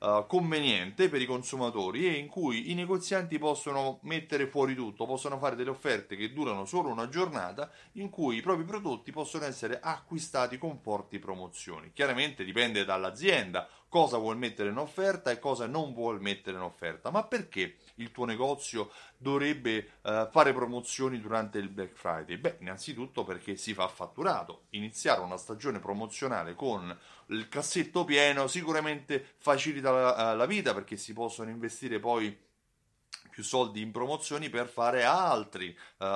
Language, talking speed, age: Italian, 150 wpm, 30-49